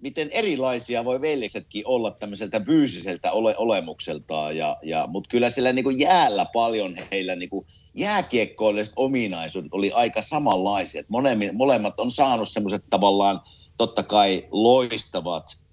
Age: 50-69